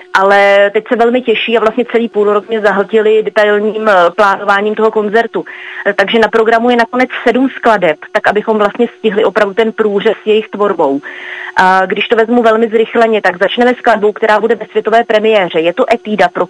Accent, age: native, 30-49